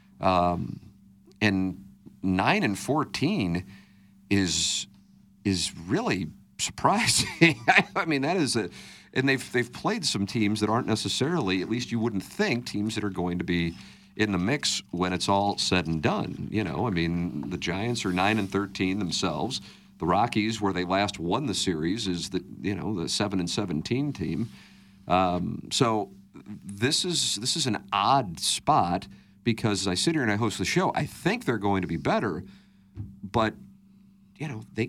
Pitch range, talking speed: 95-115 Hz, 175 wpm